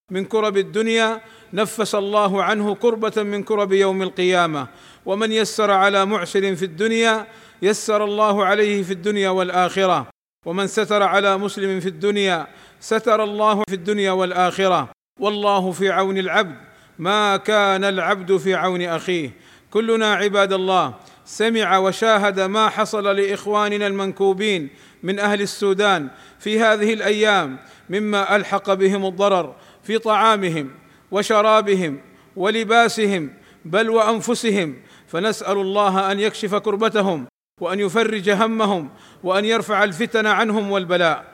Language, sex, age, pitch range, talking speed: Arabic, male, 40-59, 190-215 Hz, 120 wpm